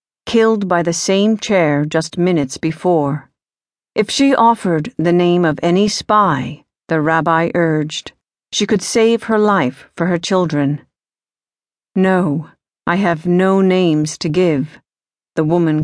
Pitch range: 160-205 Hz